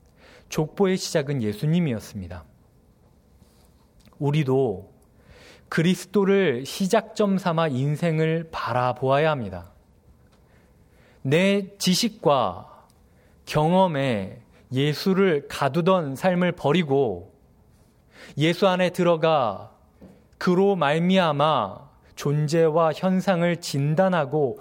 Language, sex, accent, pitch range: Korean, male, native, 115-180 Hz